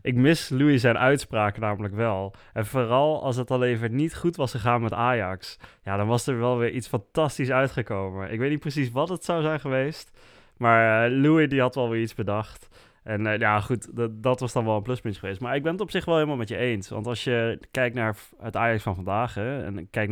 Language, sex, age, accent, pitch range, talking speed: Dutch, male, 20-39, Dutch, 105-130 Hz, 235 wpm